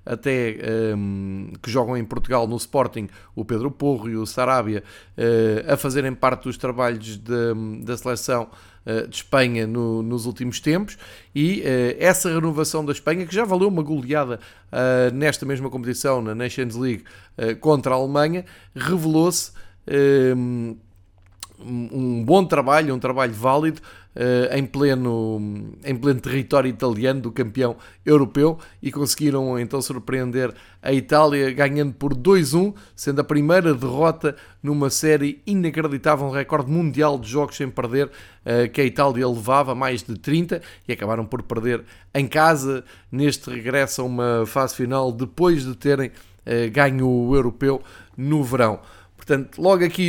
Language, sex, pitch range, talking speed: Portuguese, male, 115-145 Hz, 145 wpm